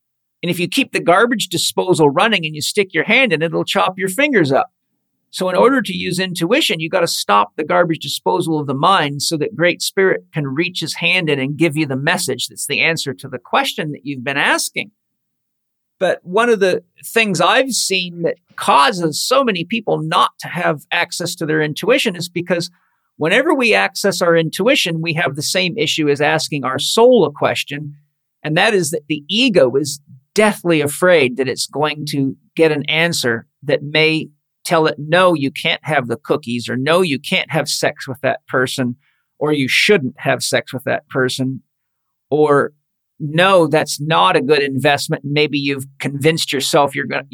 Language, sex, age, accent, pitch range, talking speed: English, male, 50-69, American, 145-185 Hz, 195 wpm